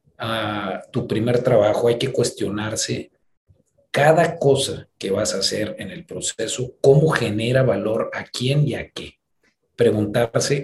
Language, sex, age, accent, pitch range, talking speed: Spanish, male, 40-59, Mexican, 105-140 Hz, 140 wpm